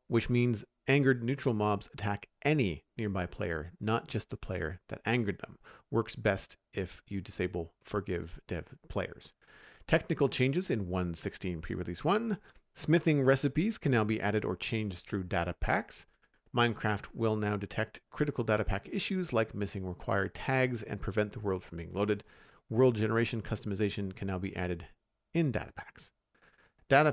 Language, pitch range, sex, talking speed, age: English, 95-120 Hz, male, 155 wpm, 40-59